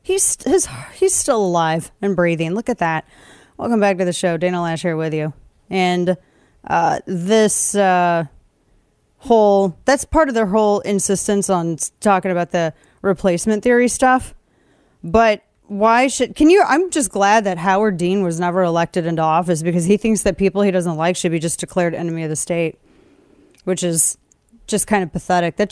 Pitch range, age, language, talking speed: 175-215 Hz, 30-49, English, 180 wpm